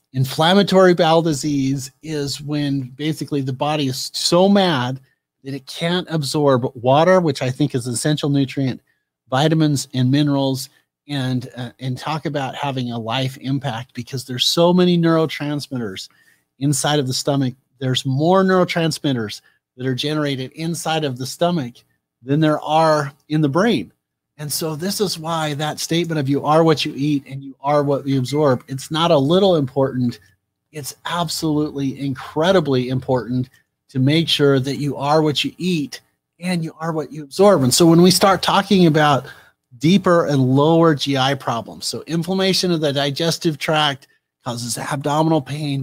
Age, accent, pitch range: 30-49, American, 135-160 Hz